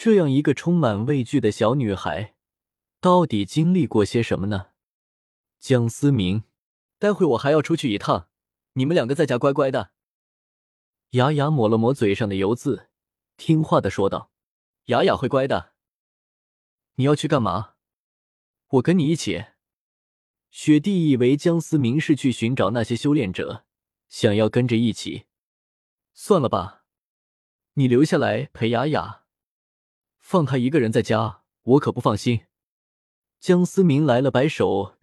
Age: 20-39